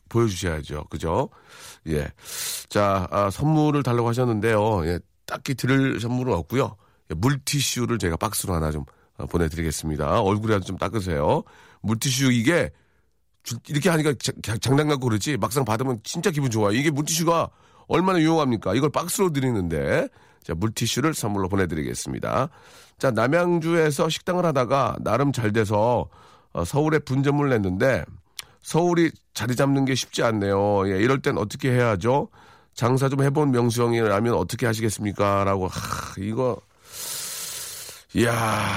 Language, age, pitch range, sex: Korean, 40-59, 100-140 Hz, male